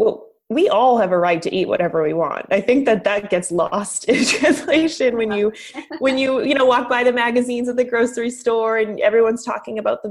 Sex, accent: female, American